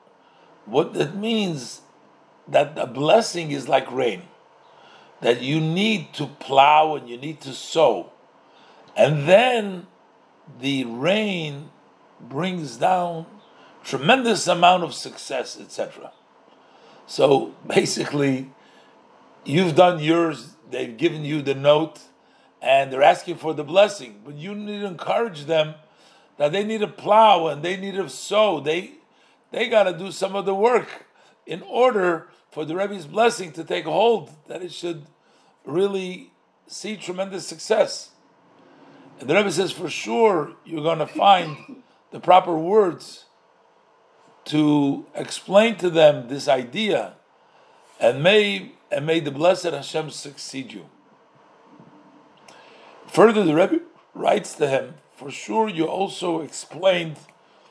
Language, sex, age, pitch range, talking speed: English, male, 50-69, 150-200 Hz, 130 wpm